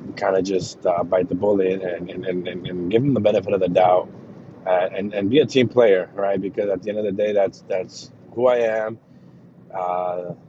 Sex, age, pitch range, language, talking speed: male, 20-39, 90-115 Hz, English, 225 wpm